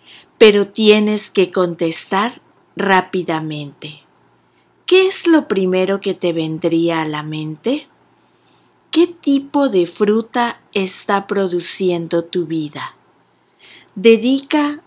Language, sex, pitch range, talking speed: Spanish, female, 170-225 Hz, 95 wpm